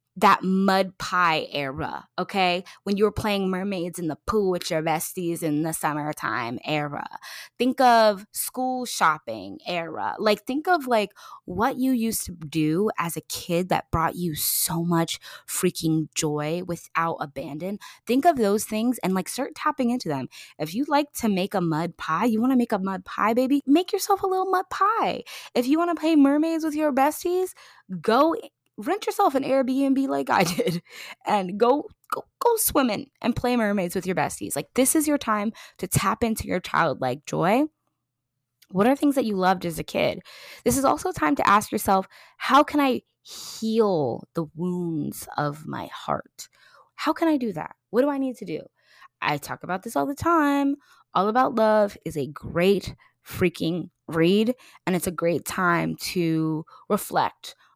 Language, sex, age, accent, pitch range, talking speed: English, female, 20-39, American, 165-265 Hz, 180 wpm